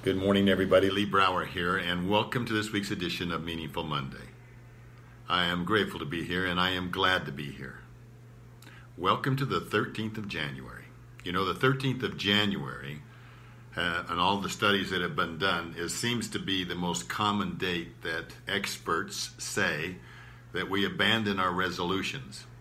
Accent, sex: American, male